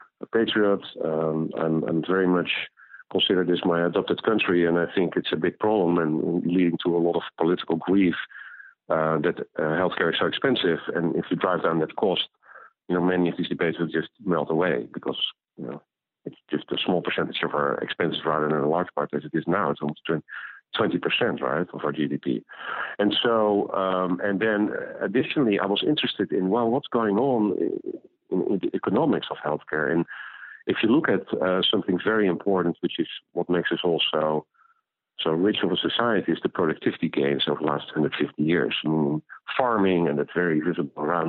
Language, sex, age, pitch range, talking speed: English, male, 50-69, 80-90 Hz, 190 wpm